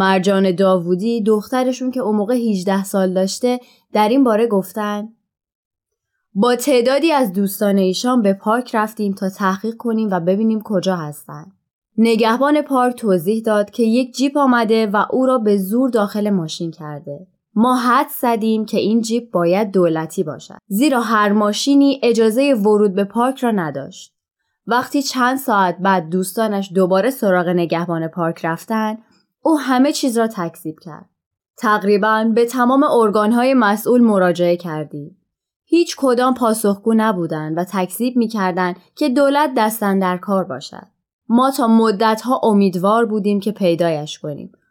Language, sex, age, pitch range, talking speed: Persian, female, 20-39, 190-245 Hz, 140 wpm